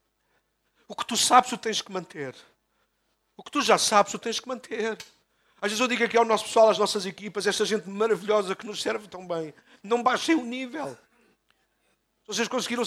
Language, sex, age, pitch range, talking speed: Portuguese, male, 50-69, 205-250 Hz, 200 wpm